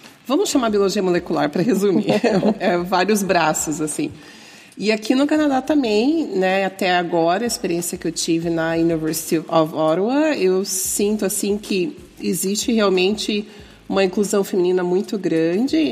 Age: 40-59